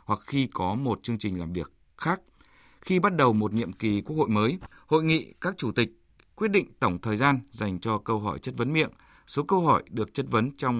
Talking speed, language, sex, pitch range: 235 wpm, Vietnamese, male, 105-145 Hz